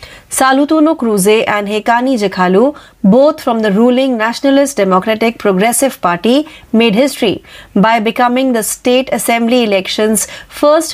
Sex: female